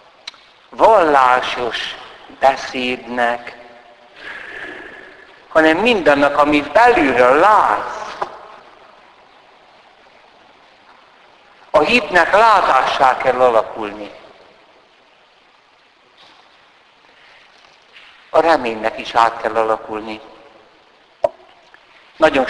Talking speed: 50 wpm